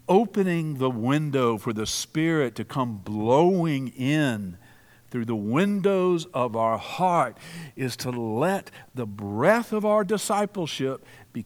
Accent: American